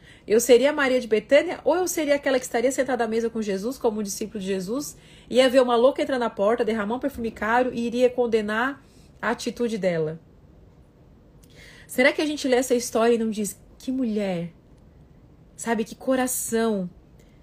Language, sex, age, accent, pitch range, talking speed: Portuguese, female, 30-49, Brazilian, 215-265 Hz, 185 wpm